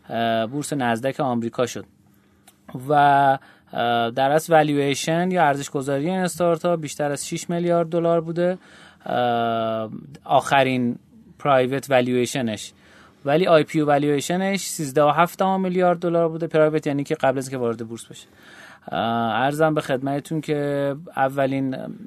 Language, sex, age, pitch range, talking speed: Persian, male, 30-49, 125-165 Hz, 125 wpm